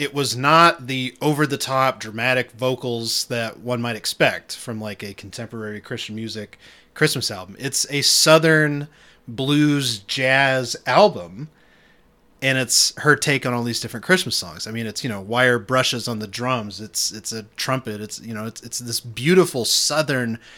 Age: 30-49